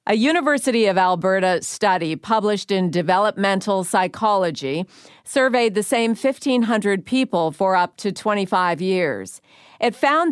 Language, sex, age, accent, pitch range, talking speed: English, female, 50-69, American, 170-215 Hz, 120 wpm